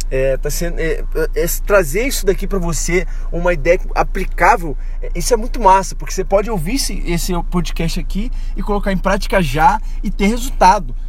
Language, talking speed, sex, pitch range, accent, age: Portuguese, 190 wpm, male, 165-205 Hz, Brazilian, 20-39